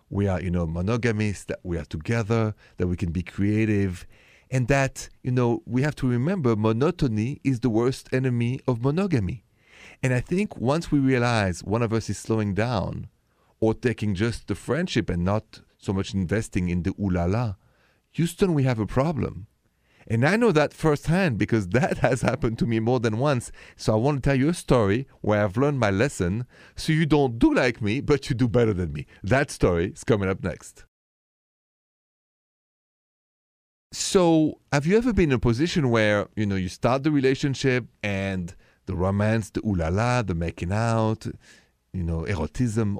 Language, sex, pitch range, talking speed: English, male, 100-135 Hz, 180 wpm